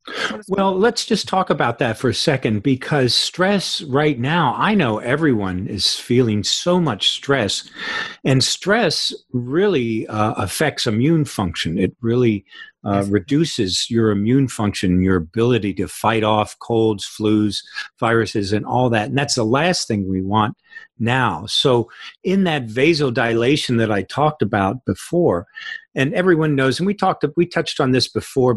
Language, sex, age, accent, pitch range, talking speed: English, male, 50-69, American, 110-150 Hz, 155 wpm